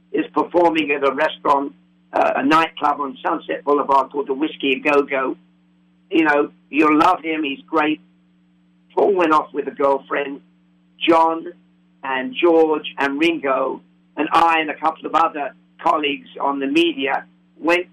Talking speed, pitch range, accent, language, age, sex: 155 wpm, 130-160 Hz, British, English, 50-69, male